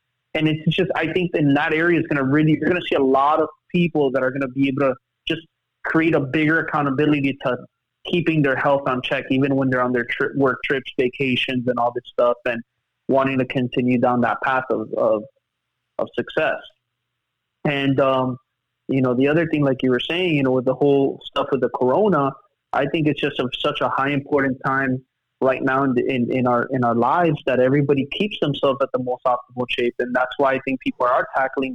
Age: 20-39